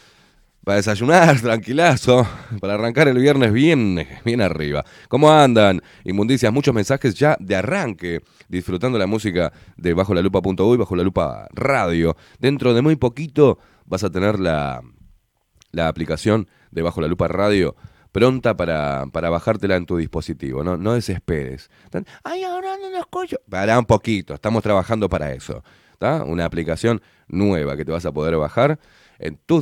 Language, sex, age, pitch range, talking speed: Spanish, male, 30-49, 85-125 Hz, 160 wpm